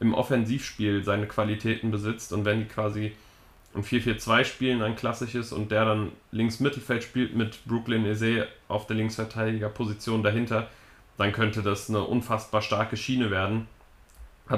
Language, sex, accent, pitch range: German, male, German, 105-120 Hz